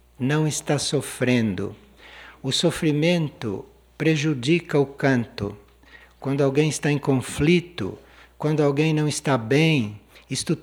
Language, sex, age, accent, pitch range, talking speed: Portuguese, male, 60-79, Brazilian, 120-155 Hz, 105 wpm